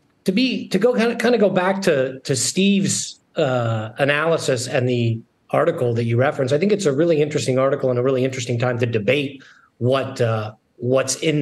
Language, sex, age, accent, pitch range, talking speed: English, male, 40-59, American, 135-190 Hz, 205 wpm